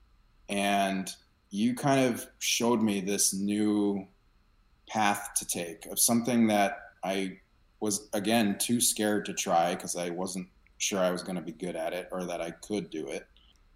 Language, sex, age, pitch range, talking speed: English, male, 30-49, 90-105 Hz, 170 wpm